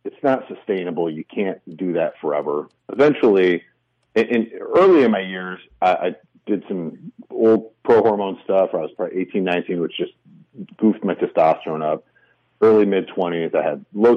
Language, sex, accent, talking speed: English, male, American, 170 wpm